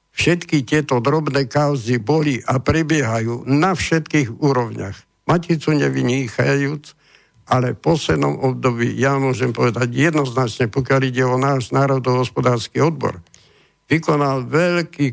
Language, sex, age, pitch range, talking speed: Slovak, male, 60-79, 125-150 Hz, 110 wpm